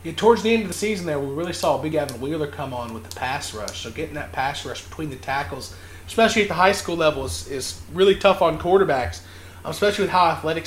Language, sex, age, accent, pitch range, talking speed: English, male, 30-49, American, 115-165 Hz, 245 wpm